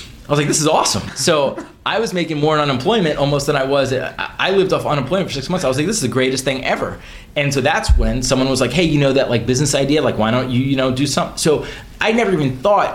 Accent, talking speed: American, 280 wpm